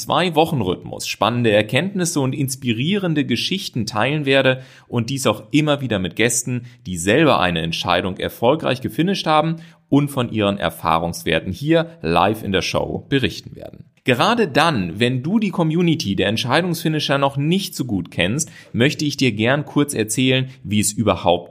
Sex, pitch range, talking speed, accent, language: male, 110-150 Hz, 155 wpm, German, German